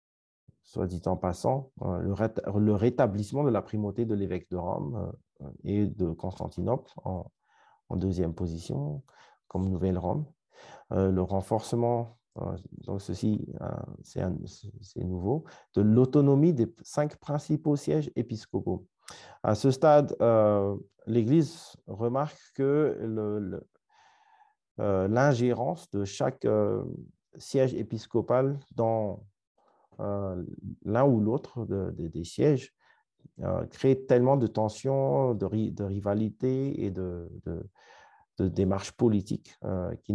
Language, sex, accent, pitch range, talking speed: French, male, French, 100-130 Hz, 115 wpm